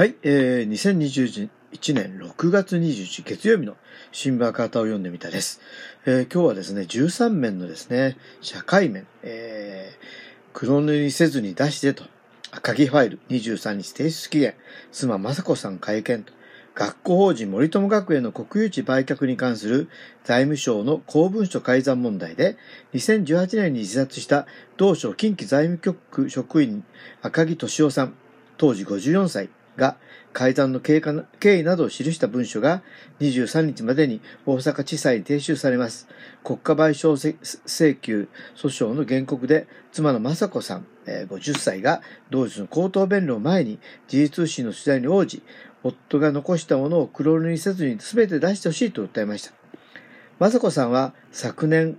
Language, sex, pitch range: Japanese, male, 130-170 Hz